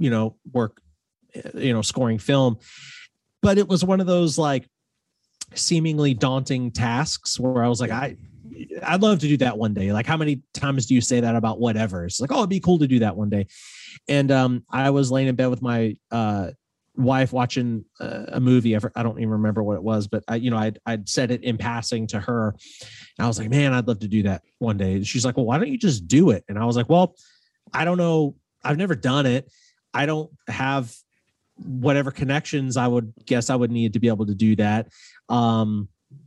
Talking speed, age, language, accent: 225 wpm, 30-49, English, American